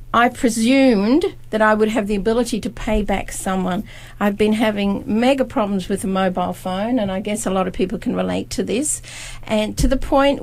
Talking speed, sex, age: 205 wpm, female, 50-69